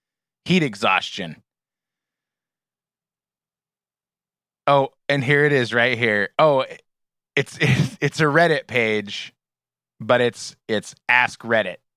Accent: American